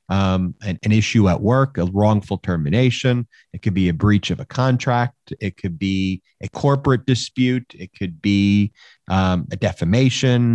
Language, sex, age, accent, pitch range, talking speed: English, male, 40-59, American, 95-115 Hz, 165 wpm